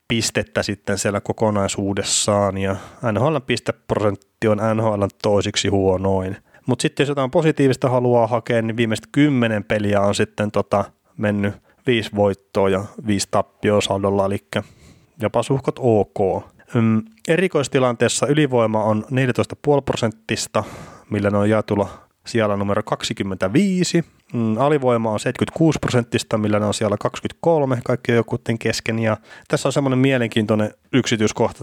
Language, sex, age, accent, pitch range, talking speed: Finnish, male, 30-49, native, 105-125 Hz, 120 wpm